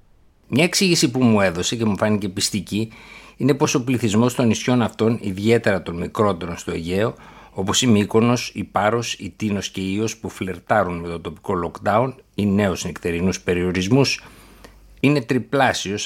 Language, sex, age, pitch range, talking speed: Greek, male, 60-79, 95-120 Hz, 160 wpm